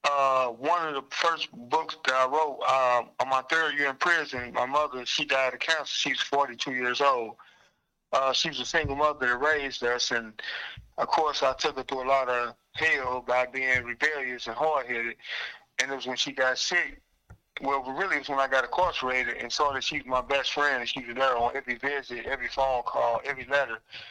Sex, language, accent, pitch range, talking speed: male, English, American, 125-145 Hz, 210 wpm